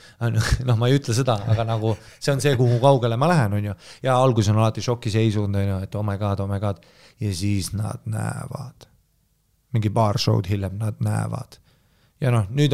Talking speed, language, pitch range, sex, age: 185 wpm, English, 110-140 Hz, male, 30-49